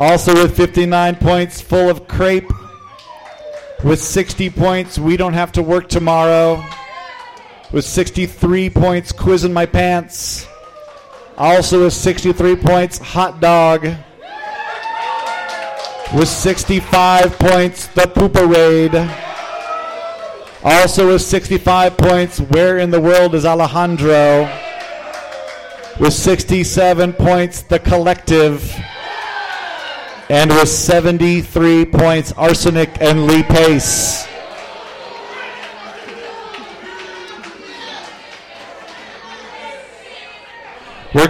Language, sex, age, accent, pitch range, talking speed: English, male, 40-59, American, 165-200 Hz, 85 wpm